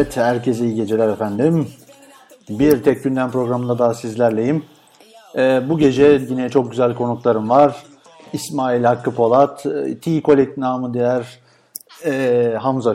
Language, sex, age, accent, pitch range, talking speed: Turkish, male, 50-69, native, 120-145 Hz, 125 wpm